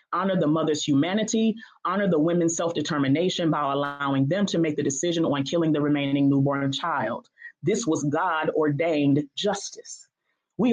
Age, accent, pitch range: 30-49, American, 145-185 Hz